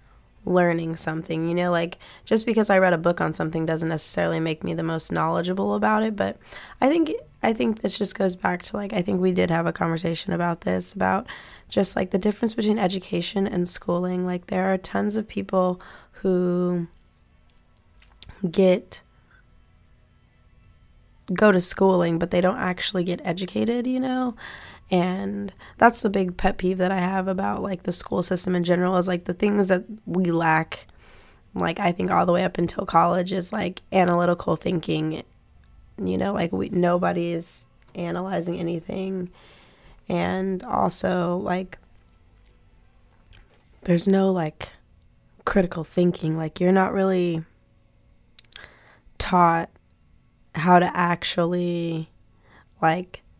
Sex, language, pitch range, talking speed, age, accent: female, English, 160-190 Hz, 145 wpm, 10-29, American